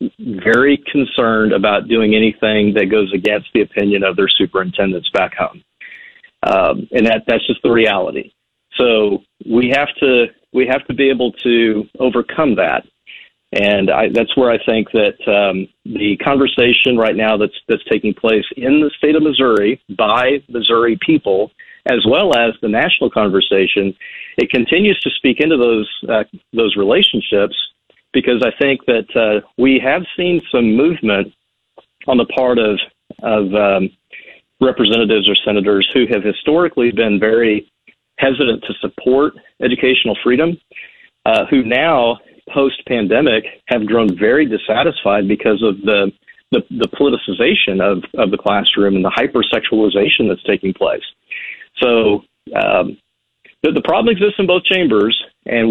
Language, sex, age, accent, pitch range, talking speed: English, male, 40-59, American, 105-150 Hz, 150 wpm